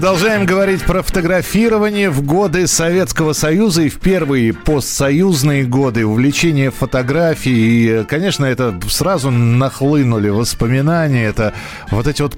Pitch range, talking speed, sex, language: 110-145 Hz, 115 wpm, male, Russian